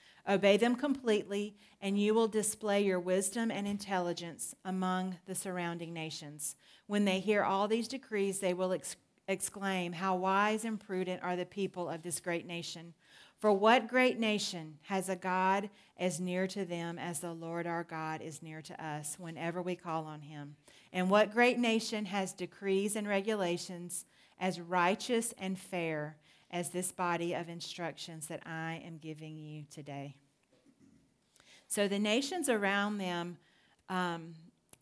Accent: American